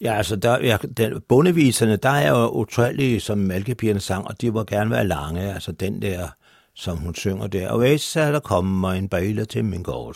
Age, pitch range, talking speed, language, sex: 60-79, 90-135 Hz, 195 wpm, Danish, male